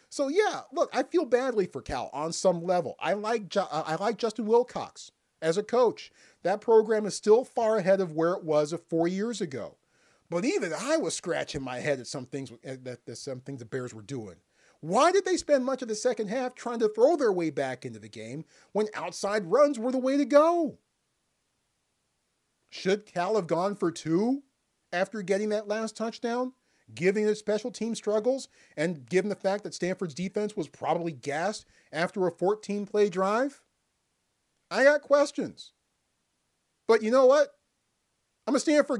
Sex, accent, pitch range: male, American, 155-230 Hz